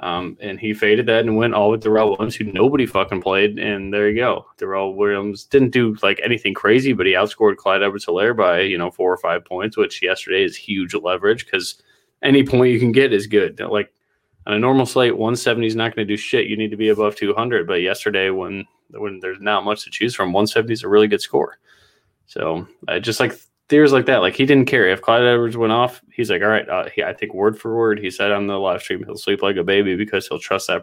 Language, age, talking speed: English, 20-39, 255 wpm